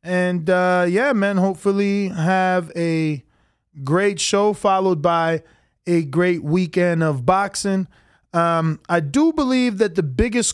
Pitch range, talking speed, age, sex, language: 160-200 Hz, 130 wpm, 20-39, male, English